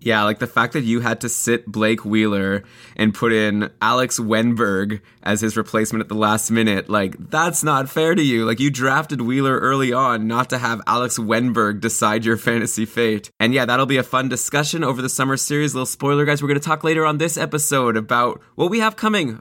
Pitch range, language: 120-150 Hz, English